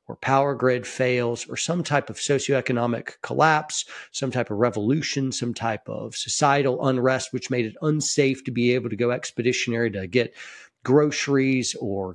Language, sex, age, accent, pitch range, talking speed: English, male, 40-59, American, 120-150 Hz, 160 wpm